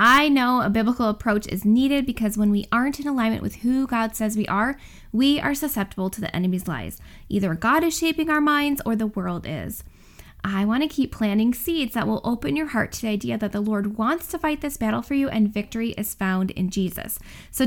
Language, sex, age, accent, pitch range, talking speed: English, female, 10-29, American, 200-260 Hz, 230 wpm